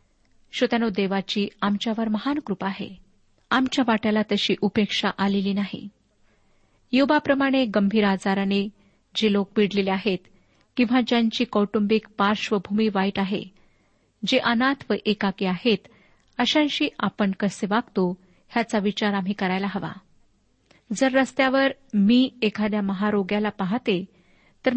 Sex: female